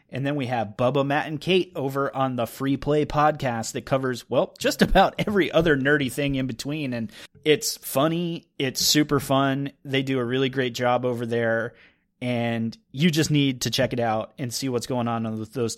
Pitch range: 125-150 Hz